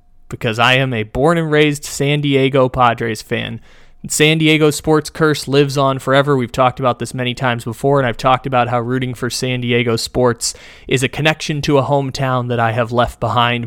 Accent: American